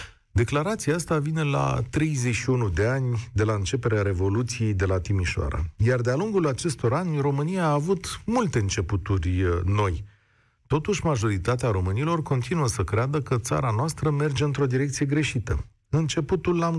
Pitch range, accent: 100-140 Hz, native